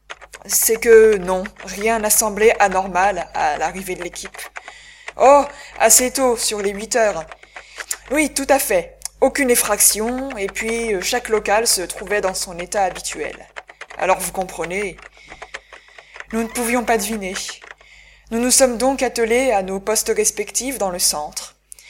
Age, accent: 20-39, French